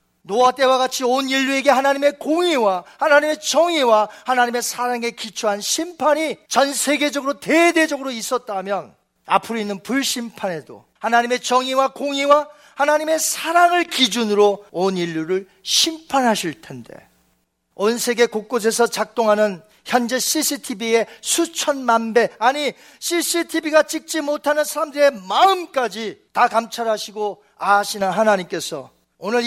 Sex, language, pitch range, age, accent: male, Korean, 190-275 Hz, 40-59, native